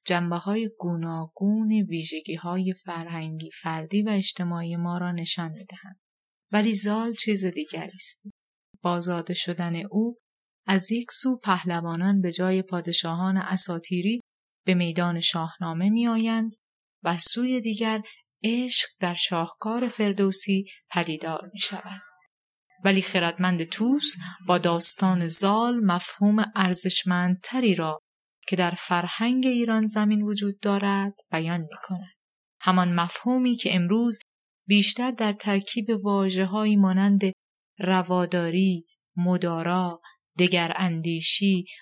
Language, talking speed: Persian, 105 wpm